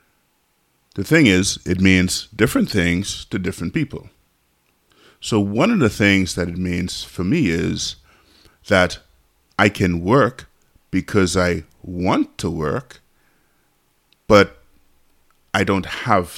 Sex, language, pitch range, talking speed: male, English, 75-100 Hz, 125 wpm